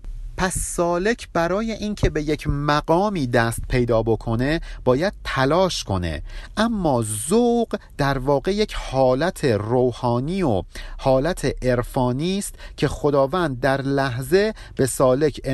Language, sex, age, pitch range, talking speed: Persian, male, 50-69, 120-180 Hz, 110 wpm